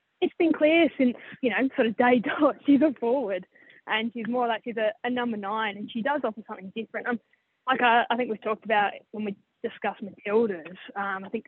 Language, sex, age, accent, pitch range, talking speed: English, female, 10-29, Australian, 210-245 Hz, 230 wpm